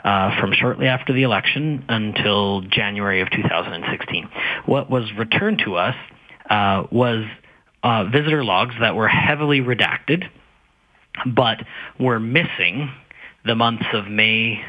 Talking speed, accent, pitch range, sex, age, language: 125 wpm, American, 105-130 Hz, male, 30-49, English